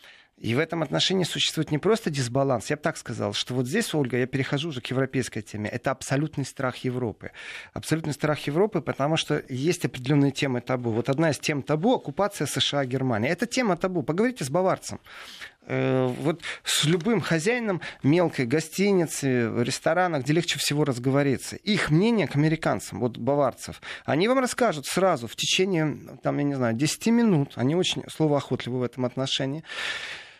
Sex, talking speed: male, 165 wpm